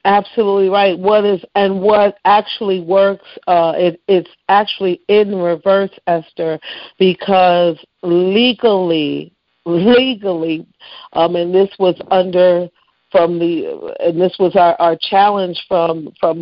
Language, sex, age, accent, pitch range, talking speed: English, female, 50-69, American, 175-200 Hz, 120 wpm